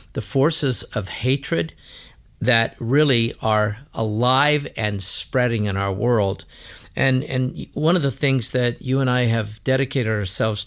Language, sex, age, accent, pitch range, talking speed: English, male, 50-69, American, 110-140 Hz, 145 wpm